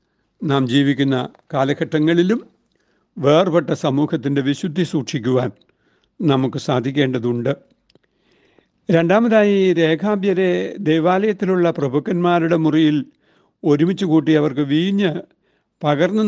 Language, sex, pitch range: Malayalam, male, 140-175 Hz